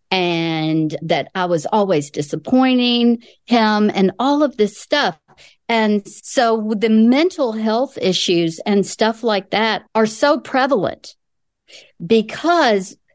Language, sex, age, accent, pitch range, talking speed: English, female, 50-69, American, 185-240 Hz, 120 wpm